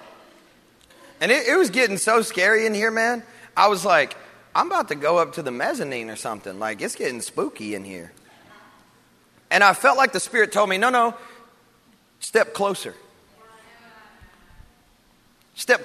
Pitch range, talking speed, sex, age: 165-235 Hz, 160 wpm, male, 30-49